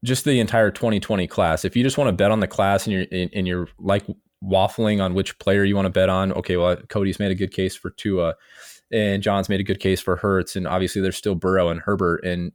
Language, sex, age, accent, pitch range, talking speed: English, male, 20-39, American, 95-110 Hz, 260 wpm